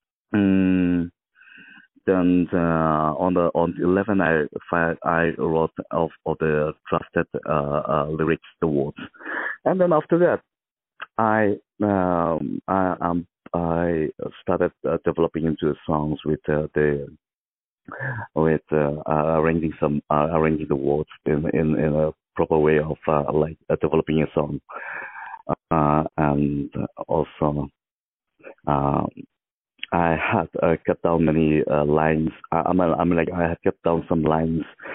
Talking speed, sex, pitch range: 140 wpm, male, 75-85 Hz